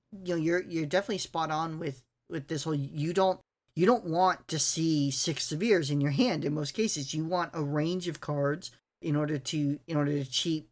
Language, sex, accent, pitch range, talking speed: English, male, American, 145-175 Hz, 220 wpm